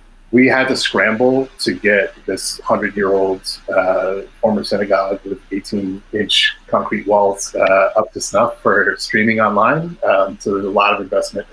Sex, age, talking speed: male, 30-49, 165 wpm